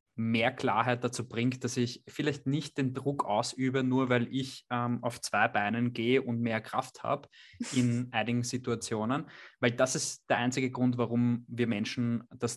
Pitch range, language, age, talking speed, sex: 115-130 Hz, German, 20-39, 170 wpm, male